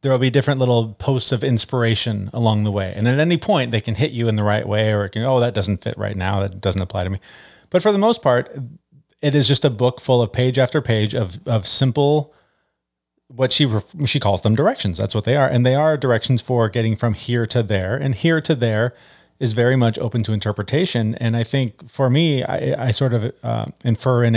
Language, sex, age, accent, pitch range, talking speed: English, male, 30-49, American, 105-130 Hz, 235 wpm